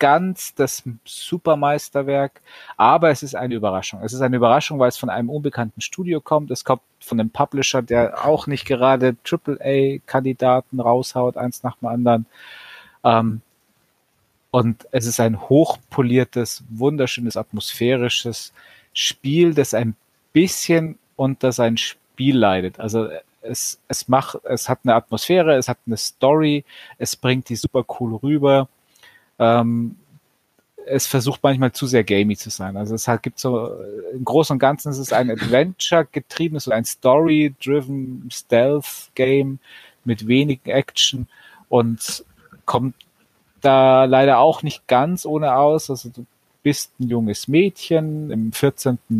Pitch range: 115-140 Hz